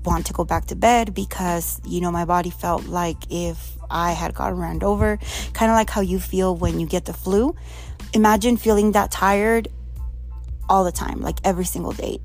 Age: 20-39